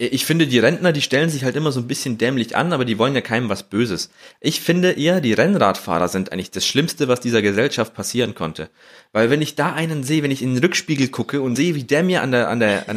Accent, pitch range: German, 130-180 Hz